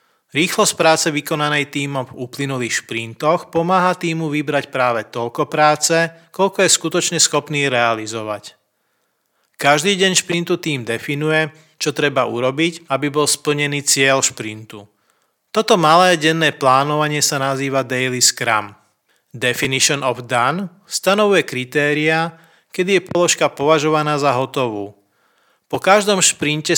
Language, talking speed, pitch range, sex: Slovak, 120 wpm, 130-165 Hz, male